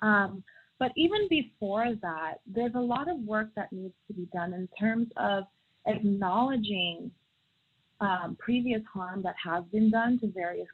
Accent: American